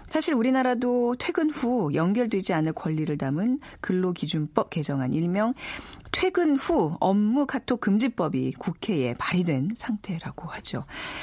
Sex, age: female, 40-59